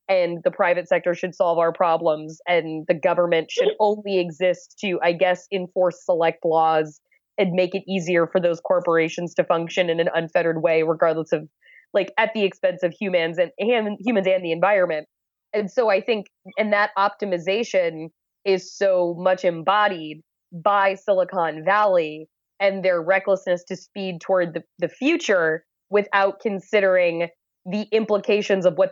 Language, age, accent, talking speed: English, 20-39, American, 160 wpm